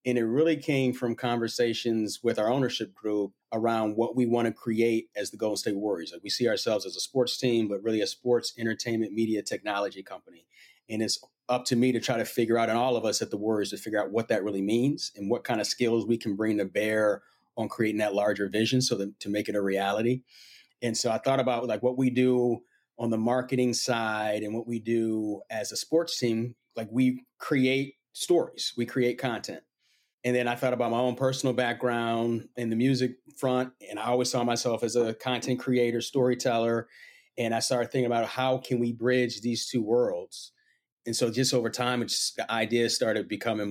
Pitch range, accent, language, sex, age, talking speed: 110-125 Hz, American, English, male, 30-49, 215 wpm